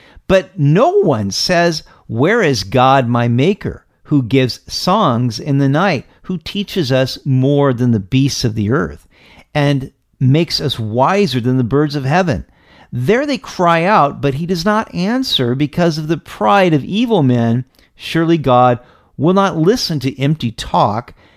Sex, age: male, 50-69